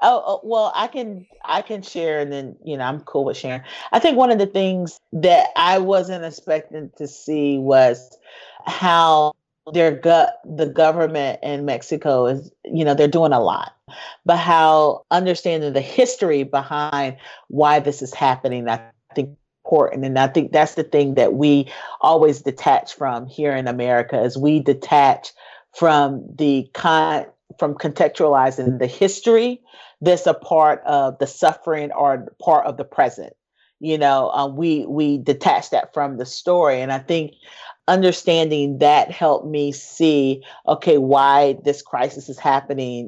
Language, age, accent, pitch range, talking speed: English, 40-59, American, 135-165 Hz, 160 wpm